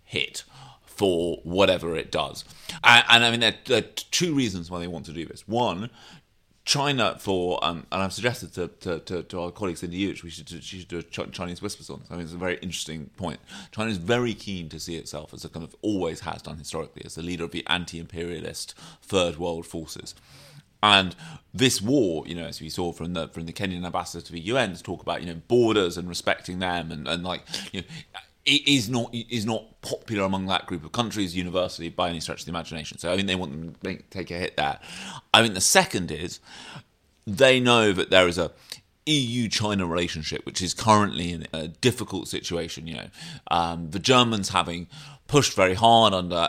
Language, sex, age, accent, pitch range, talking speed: English, male, 30-49, British, 85-105 Hz, 220 wpm